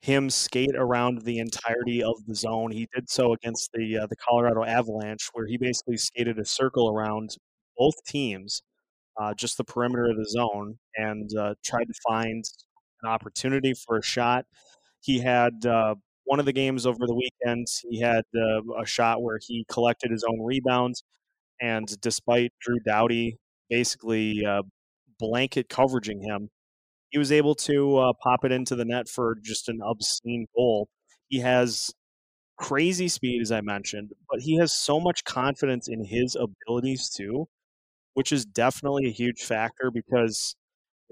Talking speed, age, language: 165 wpm, 20-39, English